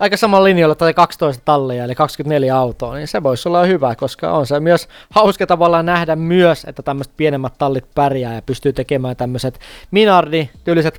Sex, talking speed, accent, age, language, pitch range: male, 175 wpm, native, 20-39, Finnish, 145-185 Hz